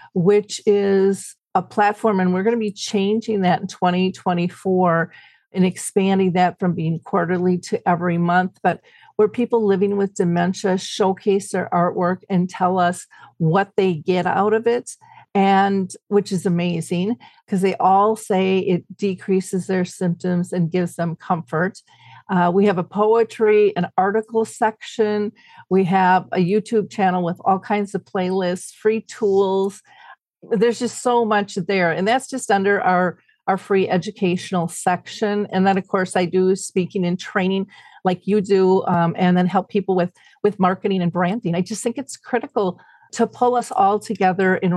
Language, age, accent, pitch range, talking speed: English, 50-69, American, 180-205 Hz, 165 wpm